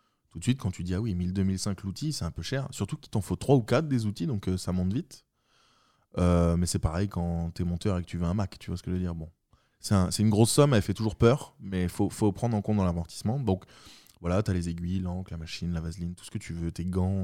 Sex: male